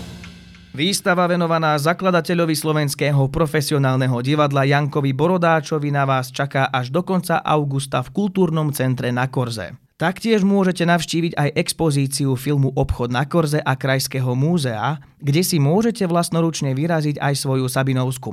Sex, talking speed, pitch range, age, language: male, 130 wpm, 130-160 Hz, 20-39, Slovak